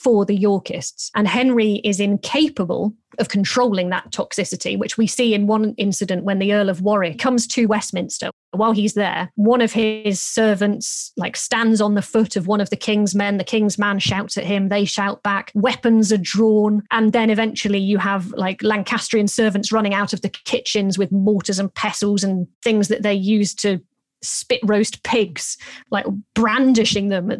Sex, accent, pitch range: female, British, 200-225 Hz